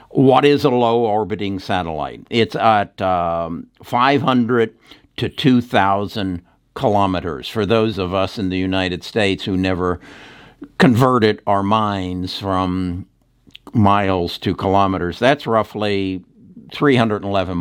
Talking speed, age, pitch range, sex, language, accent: 110 wpm, 60-79, 95-130 Hz, male, English, American